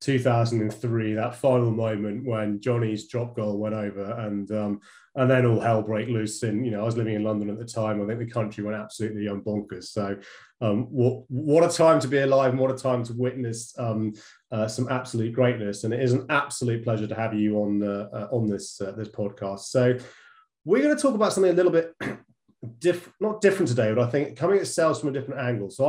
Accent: British